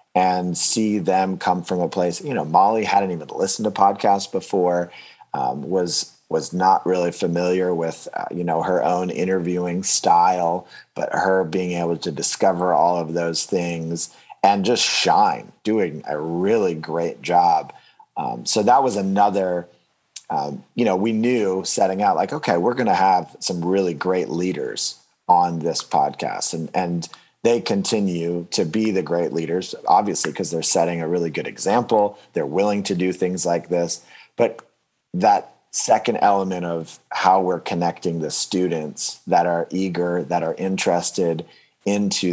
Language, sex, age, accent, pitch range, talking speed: English, male, 30-49, American, 85-95 Hz, 160 wpm